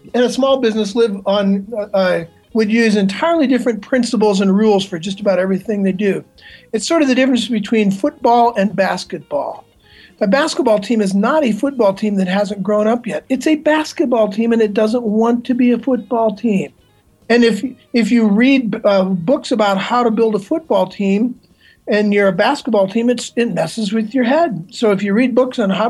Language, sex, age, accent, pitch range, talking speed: English, male, 50-69, American, 200-245 Hz, 205 wpm